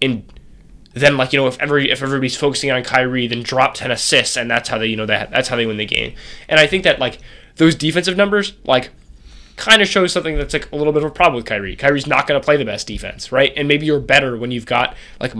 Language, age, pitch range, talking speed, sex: English, 10-29, 115-140 Hz, 270 wpm, male